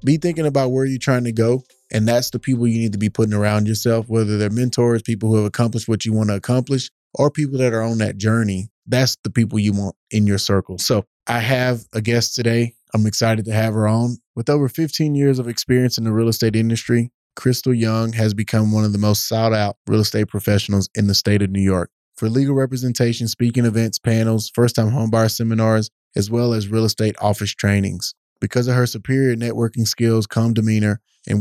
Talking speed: 215 wpm